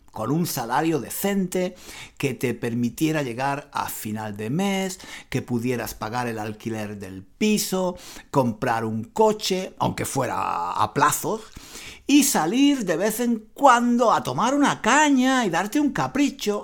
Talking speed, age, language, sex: 145 wpm, 60-79, Spanish, male